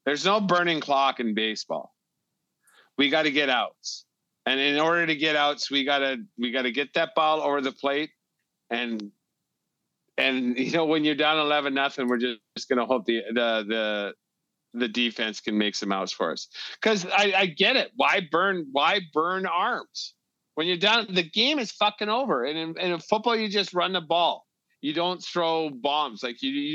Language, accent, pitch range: English, American, 140-190 Hz